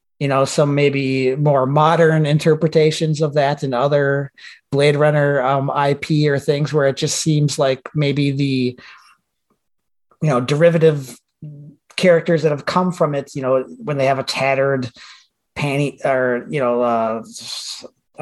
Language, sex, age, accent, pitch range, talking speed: English, male, 30-49, American, 135-155 Hz, 150 wpm